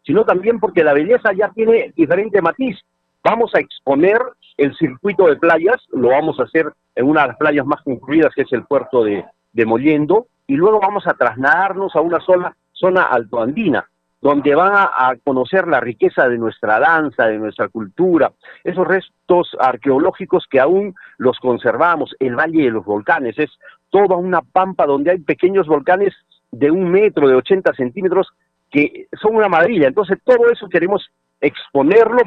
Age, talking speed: 50-69, 175 wpm